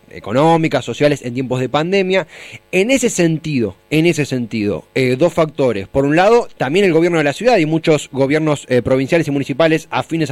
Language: Spanish